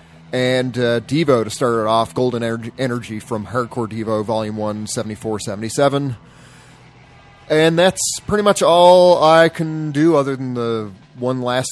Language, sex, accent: English, male, American